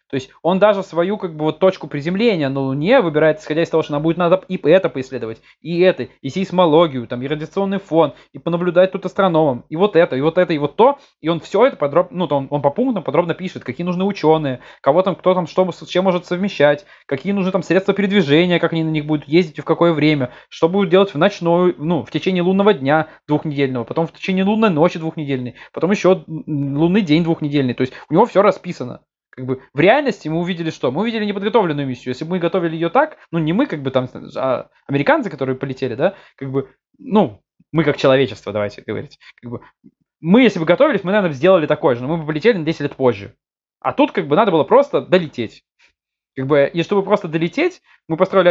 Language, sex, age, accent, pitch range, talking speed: Russian, male, 20-39, native, 145-190 Hz, 225 wpm